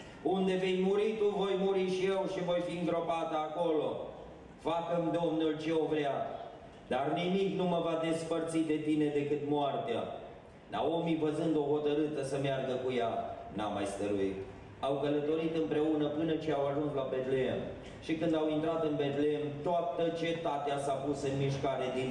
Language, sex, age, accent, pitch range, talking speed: Romanian, male, 30-49, native, 135-160 Hz, 165 wpm